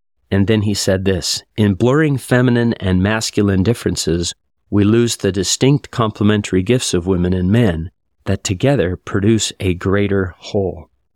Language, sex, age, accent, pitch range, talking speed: English, male, 40-59, American, 95-115 Hz, 145 wpm